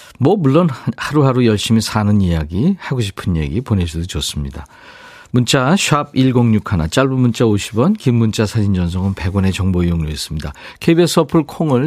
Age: 50-69